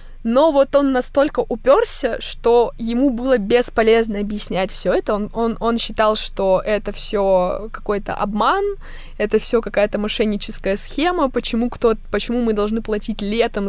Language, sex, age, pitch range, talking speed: Russian, female, 20-39, 210-255 Hz, 145 wpm